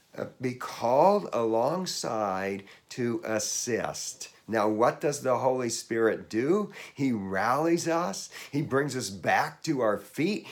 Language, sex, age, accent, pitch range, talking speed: English, male, 50-69, American, 110-170 Hz, 130 wpm